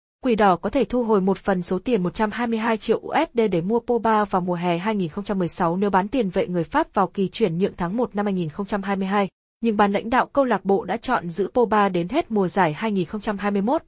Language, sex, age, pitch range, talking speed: Vietnamese, female, 20-39, 185-230 Hz, 215 wpm